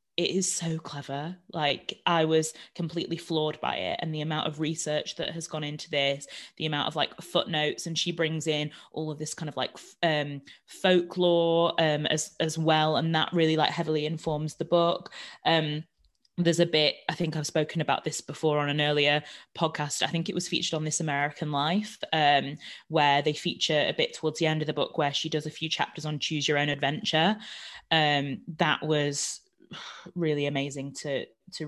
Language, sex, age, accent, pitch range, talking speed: English, female, 20-39, British, 150-170 Hz, 200 wpm